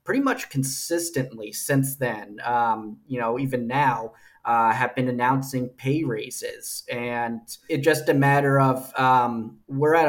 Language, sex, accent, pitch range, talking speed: English, male, American, 120-135 Hz, 150 wpm